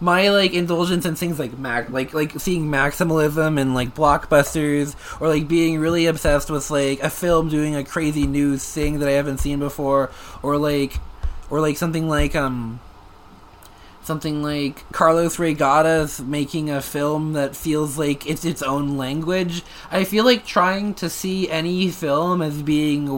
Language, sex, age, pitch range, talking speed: English, male, 20-39, 130-165 Hz, 165 wpm